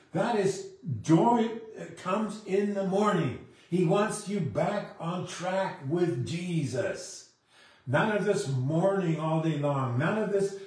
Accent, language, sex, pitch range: American, English, male, 150-195 Hz